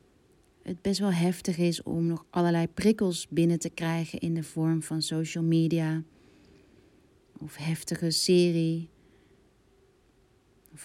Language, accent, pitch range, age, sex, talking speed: Dutch, Dutch, 160-175 Hz, 30-49, female, 120 wpm